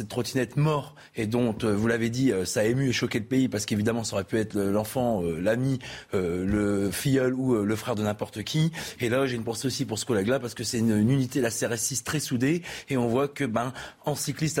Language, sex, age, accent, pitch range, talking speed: French, male, 30-49, French, 115-140 Hz, 255 wpm